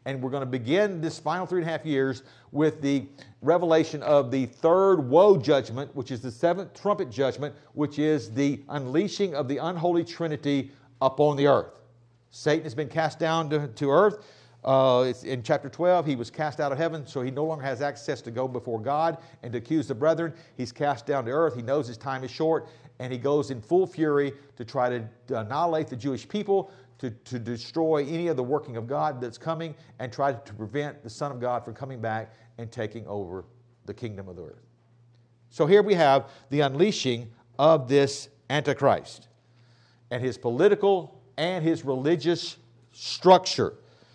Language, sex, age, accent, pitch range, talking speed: English, male, 50-69, American, 125-160 Hz, 190 wpm